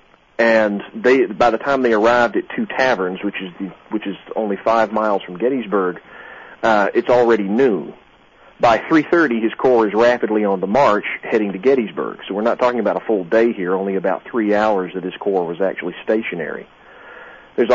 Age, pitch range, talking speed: 40-59, 100-115 Hz, 190 wpm